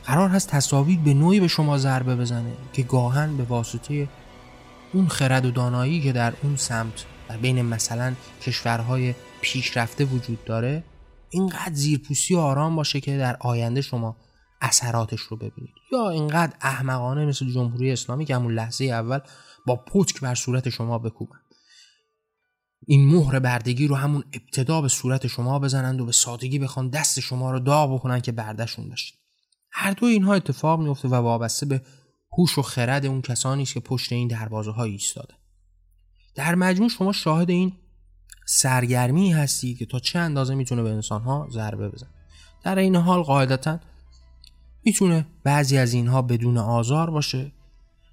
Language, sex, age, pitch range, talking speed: Persian, male, 20-39, 115-145 Hz, 155 wpm